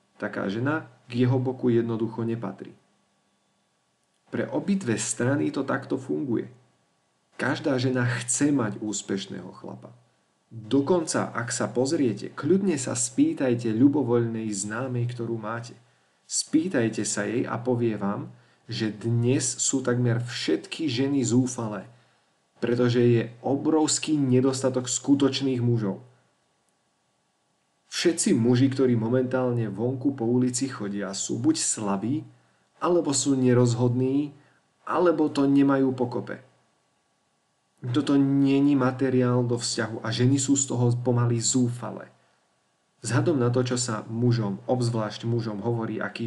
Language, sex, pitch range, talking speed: Slovak, male, 115-135 Hz, 115 wpm